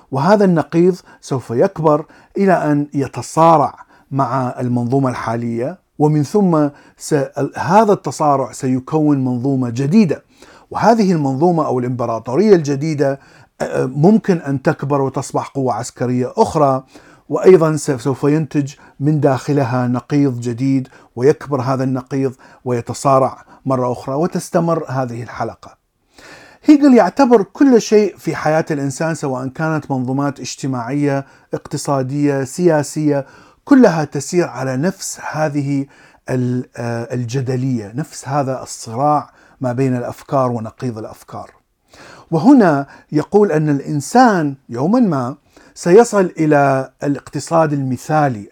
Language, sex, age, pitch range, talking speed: Arabic, male, 50-69, 130-160 Hz, 100 wpm